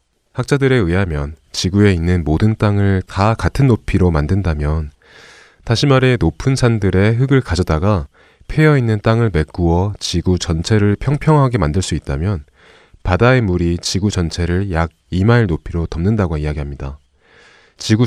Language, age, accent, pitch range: Korean, 30-49, native, 80-115 Hz